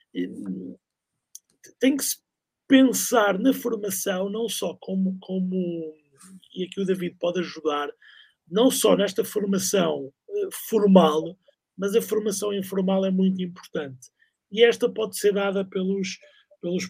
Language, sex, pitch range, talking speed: Portuguese, male, 185-225 Hz, 130 wpm